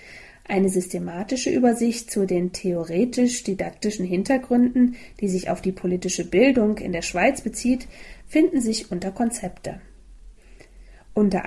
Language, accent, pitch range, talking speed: German, German, 185-240 Hz, 115 wpm